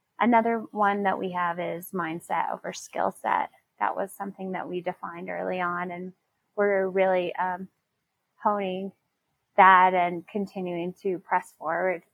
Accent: American